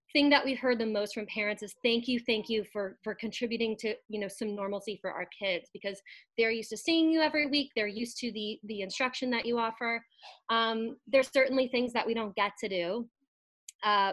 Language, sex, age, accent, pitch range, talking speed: English, female, 20-39, American, 205-245 Hz, 220 wpm